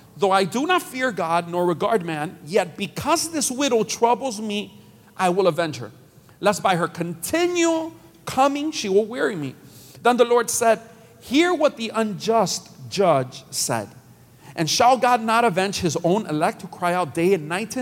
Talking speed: 180 wpm